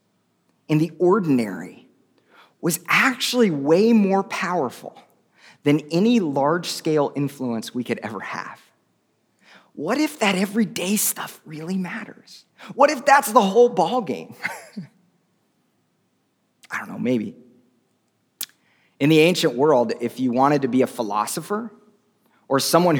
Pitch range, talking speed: 145-210 Hz, 120 wpm